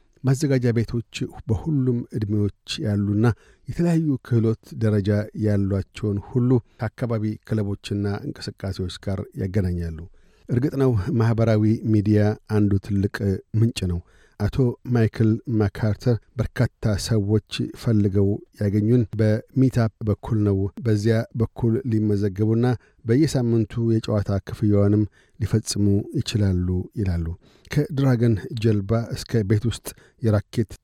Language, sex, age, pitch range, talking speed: Amharic, male, 50-69, 100-115 Hz, 95 wpm